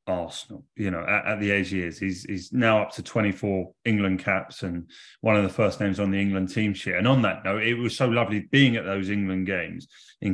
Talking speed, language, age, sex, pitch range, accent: 245 wpm, English, 30-49, male, 95-120 Hz, British